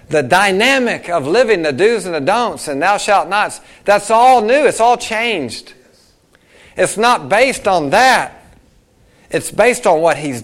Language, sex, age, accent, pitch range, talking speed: English, male, 50-69, American, 145-215 Hz, 165 wpm